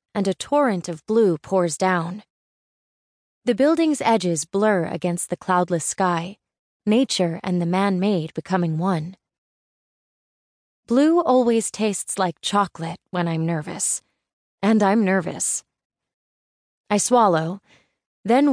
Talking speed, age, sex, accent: 115 wpm, 20-39, female, American